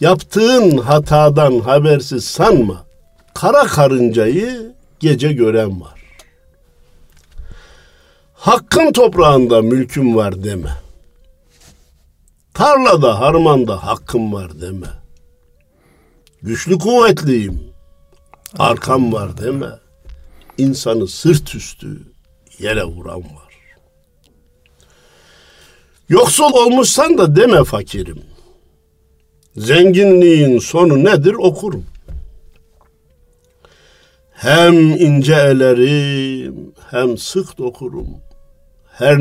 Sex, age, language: male, 50-69, Turkish